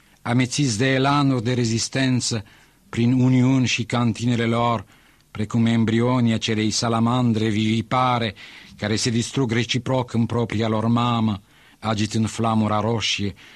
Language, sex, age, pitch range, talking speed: Romanian, male, 50-69, 105-135 Hz, 115 wpm